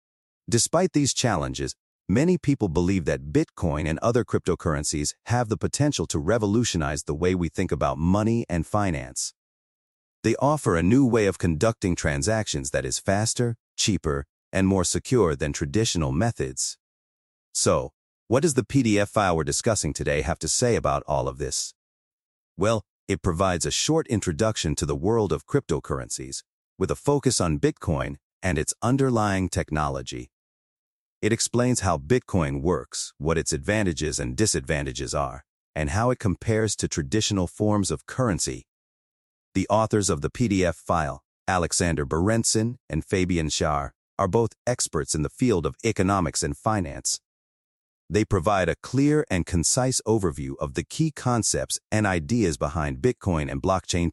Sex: male